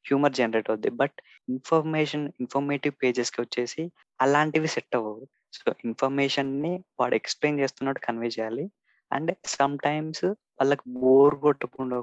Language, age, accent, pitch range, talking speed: Telugu, 20-39, native, 115-140 Hz, 125 wpm